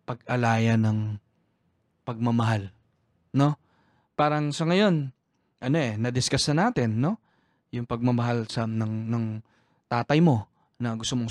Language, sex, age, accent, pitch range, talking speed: Filipino, male, 20-39, native, 120-160 Hz, 120 wpm